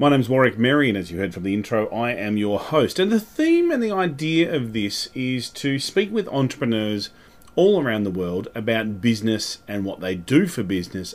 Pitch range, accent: 105-160 Hz, Australian